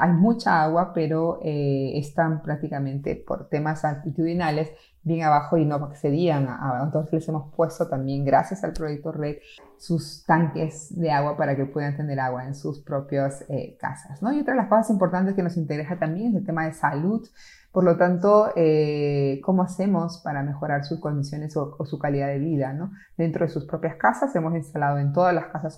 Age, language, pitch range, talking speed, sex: 30-49, Spanish, 145-170 Hz, 195 wpm, female